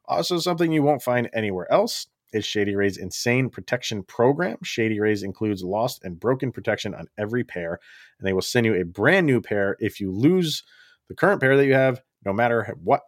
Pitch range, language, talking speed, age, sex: 100-125 Hz, English, 200 wpm, 30-49, male